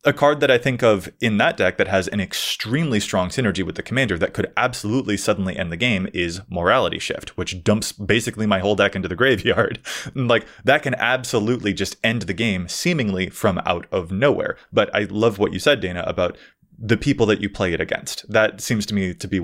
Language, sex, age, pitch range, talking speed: English, male, 20-39, 95-125 Hz, 220 wpm